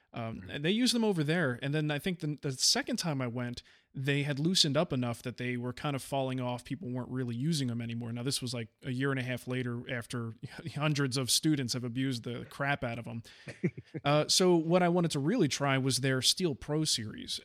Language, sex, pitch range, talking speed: English, male, 125-150 Hz, 235 wpm